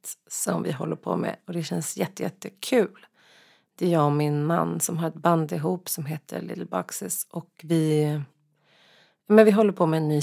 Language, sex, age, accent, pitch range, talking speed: Swedish, female, 30-49, native, 155-195 Hz, 200 wpm